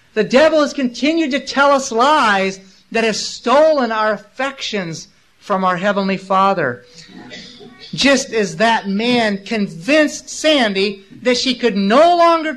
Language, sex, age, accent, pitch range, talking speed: English, male, 50-69, American, 195-275 Hz, 135 wpm